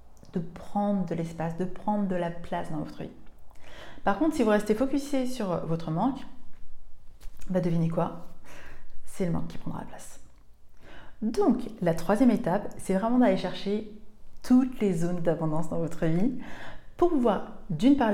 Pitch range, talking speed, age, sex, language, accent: 165-225 Hz, 165 wpm, 30-49, female, French, French